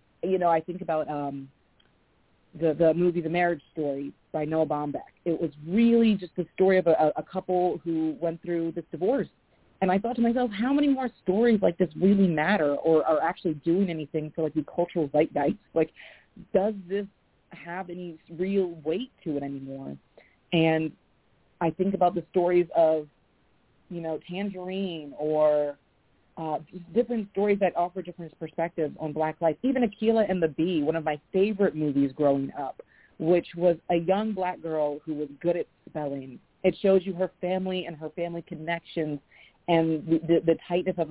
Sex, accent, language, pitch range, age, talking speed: female, American, English, 155-185 Hz, 40-59, 175 wpm